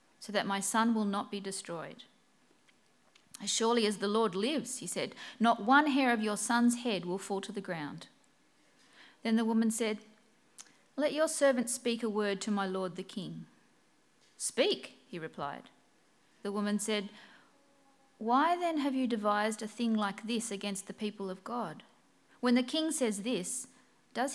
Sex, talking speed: female, 170 wpm